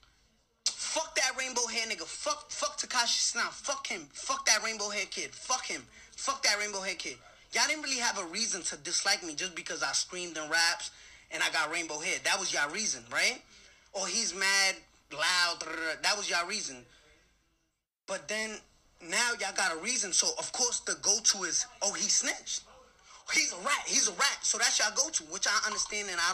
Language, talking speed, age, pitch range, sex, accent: English, 200 wpm, 20-39, 190-240 Hz, male, American